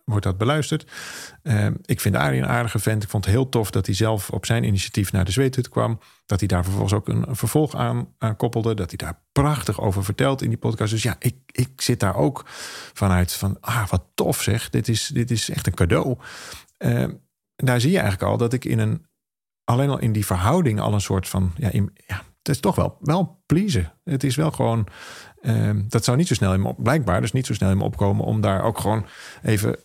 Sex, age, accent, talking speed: male, 40-59, Dutch, 235 wpm